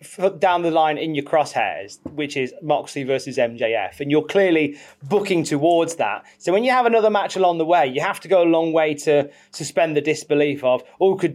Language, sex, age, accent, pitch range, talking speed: English, male, 30-49, British, 145-190 Hz, 210 wpm